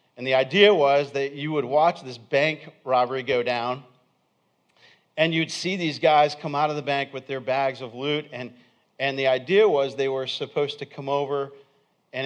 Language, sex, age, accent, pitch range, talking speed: English, male, 40-59, American, 120-145 Hz, 195 wpm